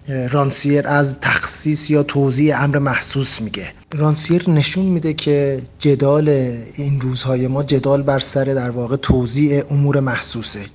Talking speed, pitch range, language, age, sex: 135 wpm, 130-150 Hz, Persian, 30-49, male